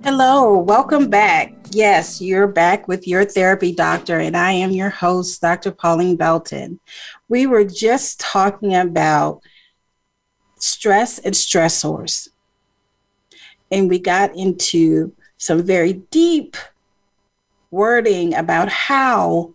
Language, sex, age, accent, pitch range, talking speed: English, female, 40-59, American, 175-230 Hz, 110 wpm